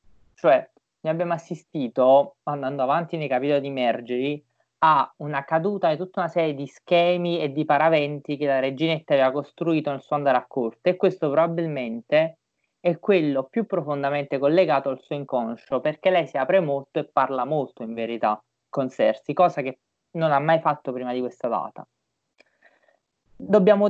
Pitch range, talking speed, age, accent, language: 140-175 Hz, 165 wpm, 20-39, native, Italian